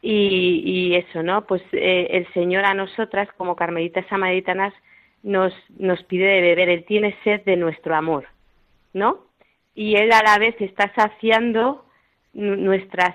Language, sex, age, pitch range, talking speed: Spanish, female, 30-49, 175-205 Hz, 150 wpm